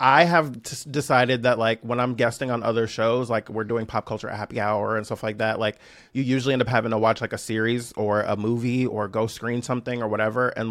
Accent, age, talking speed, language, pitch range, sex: American, 30-49, 240 wpm, English, 110-130 Hz, male